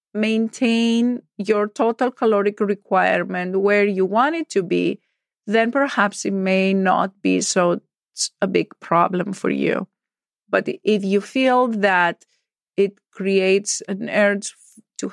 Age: 40-59